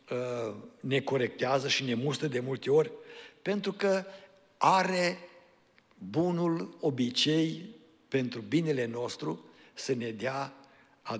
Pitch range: 130-165 Hz